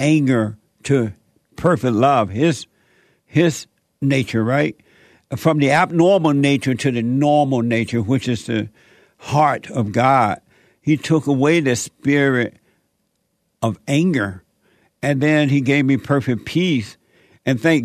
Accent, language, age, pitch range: American, English, 60-79, 125-145 Hz